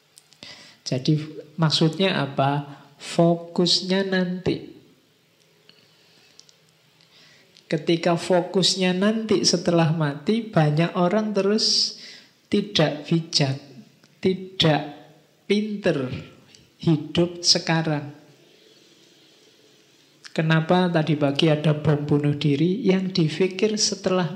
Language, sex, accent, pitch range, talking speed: Indonesian, male, native, 145-180 Hz, 70 wpm